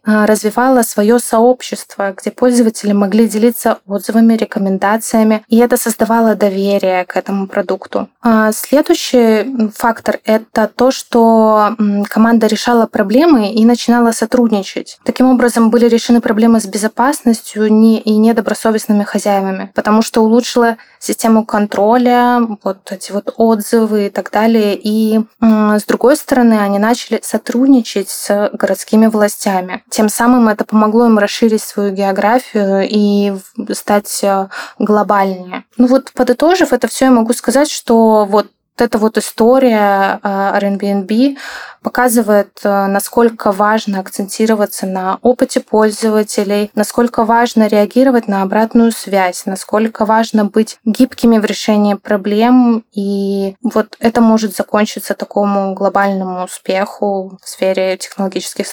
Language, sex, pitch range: Russian, female, 205-235 Hz